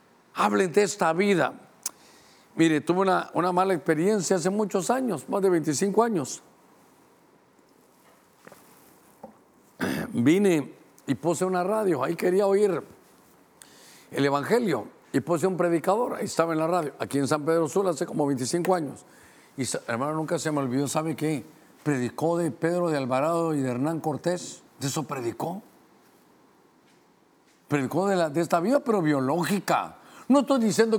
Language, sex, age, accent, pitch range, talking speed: Spanish, male, 50-69, Mexican, 150-195 Hz, 145 wpm